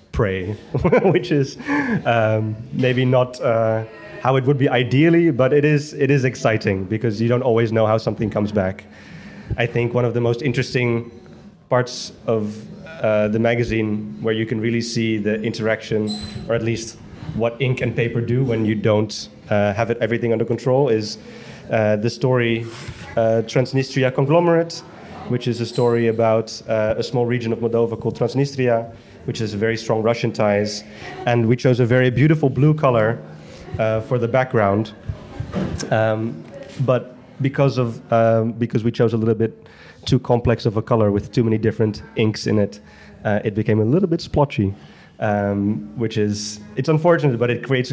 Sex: male